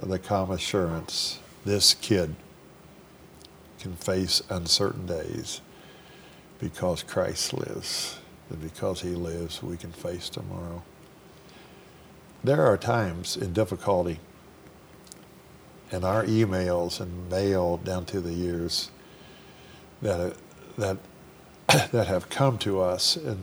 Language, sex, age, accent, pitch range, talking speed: English, male, 60-79, American, 85-100 Hz, 110 wpm